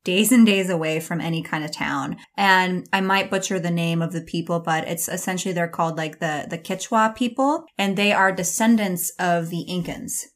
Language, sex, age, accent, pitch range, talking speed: English, female, 20-39, American, 170-210 Hz, 205 wpm